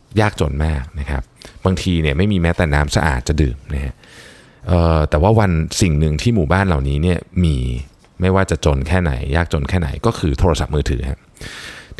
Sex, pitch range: male, 75-105 Hz